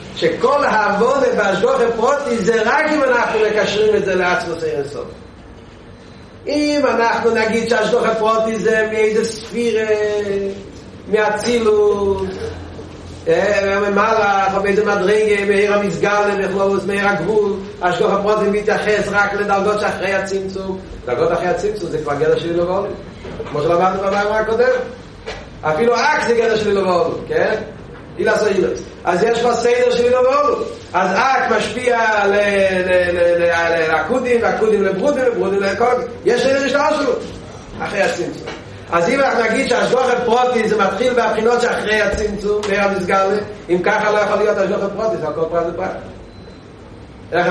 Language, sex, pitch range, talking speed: Hebrew, male, 195-235 Hz, 120 wpm